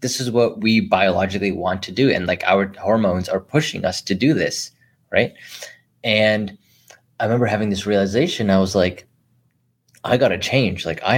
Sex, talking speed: male, 175 wpm